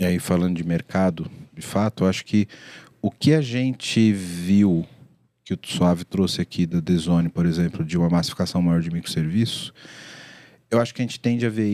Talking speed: 195 wpm